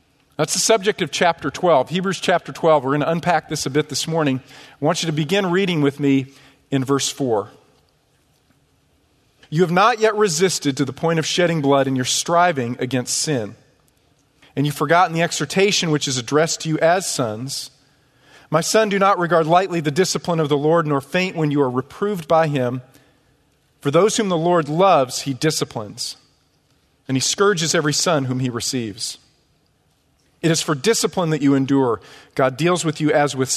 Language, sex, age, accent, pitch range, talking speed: English, male, 40-59, American, 135-170 Hz, 190 wpm